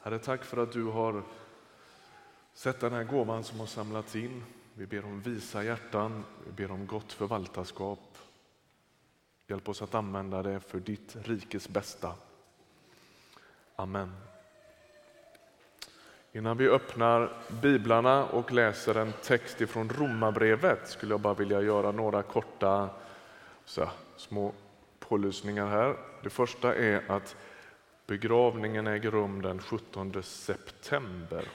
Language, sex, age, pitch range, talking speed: Swedish, male, 30-49, 95-115 Hz, 125 wpm